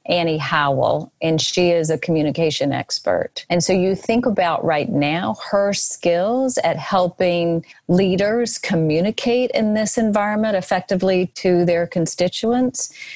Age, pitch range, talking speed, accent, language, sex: 40-59, 160-195 Hz, 130 wpm, American, English, female